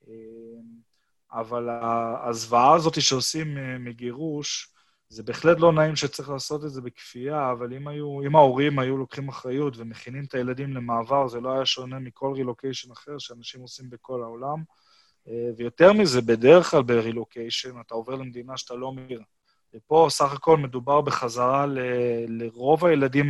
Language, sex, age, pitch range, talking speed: Hebrew, male, 20-39, 125-150 Hz, 145 wpm